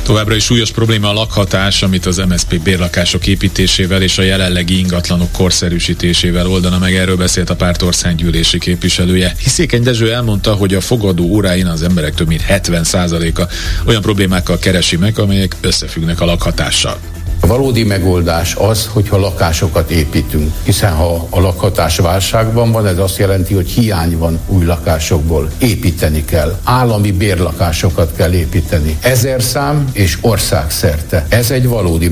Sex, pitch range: male, 85-105 Hz